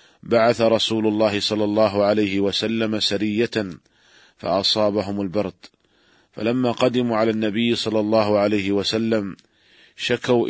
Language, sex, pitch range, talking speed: Arabic, male, 105-115 Hz, 110 wpm